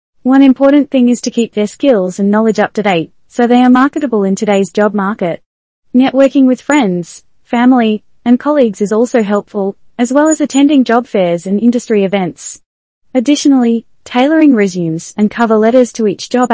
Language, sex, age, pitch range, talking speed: English, female, 20-39, 195-260 Hz, 175 wpm